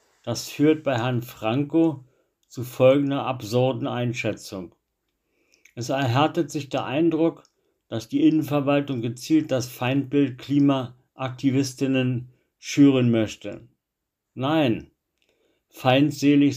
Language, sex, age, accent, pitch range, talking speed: German, male, 60-79, German, 115-135 Hz, 90 wpm